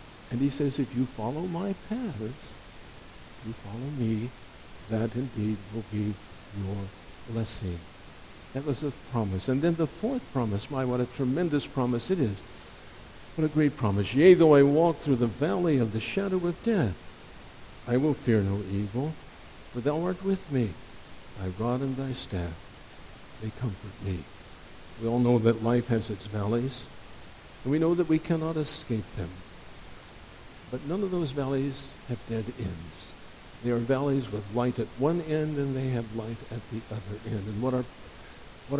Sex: male